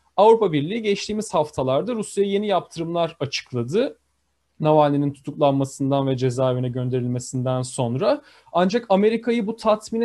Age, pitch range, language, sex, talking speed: 40-59, 150-205 Hz, Turkish, male, 105 wpm